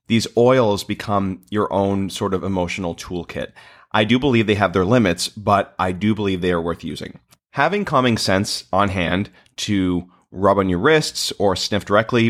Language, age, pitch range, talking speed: English, 30-49, 90-110 Hz, 180 wpm